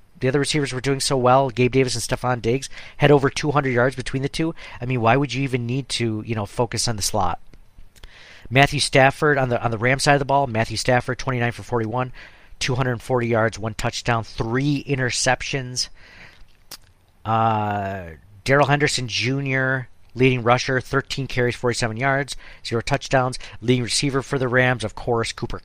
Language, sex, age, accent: English, male, 40-59, American